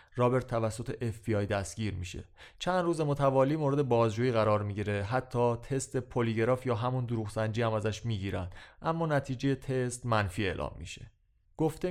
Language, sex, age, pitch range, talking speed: Persian, male, 30-49, 105-135 Hz, 140 wpm